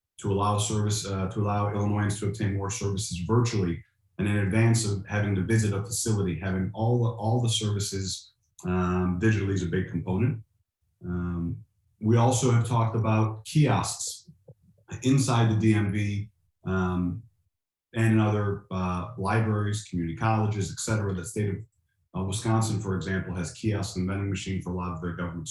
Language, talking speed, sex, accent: English, 160 wpm, male, American